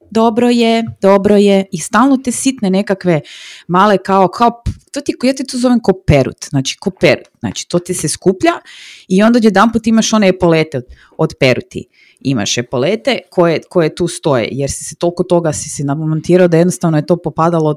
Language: Croatian